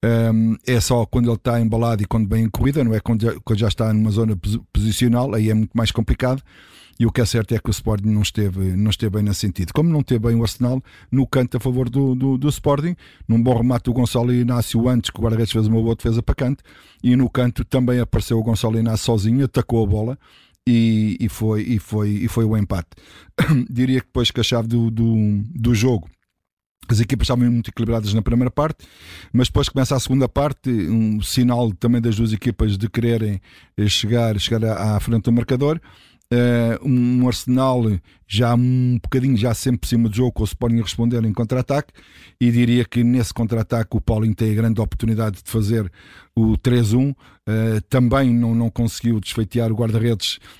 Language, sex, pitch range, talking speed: Portuguese, male, 110-125 Hz, 200 wpm